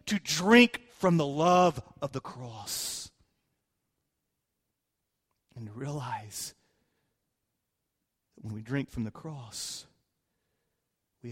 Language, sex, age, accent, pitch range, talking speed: English, male, 40-59, American, 120-190 Hz, 95 wpm